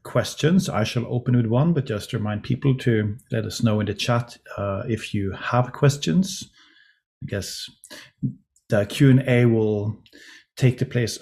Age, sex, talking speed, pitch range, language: 30-49, male, 160 wpm, 110-140 Hz, English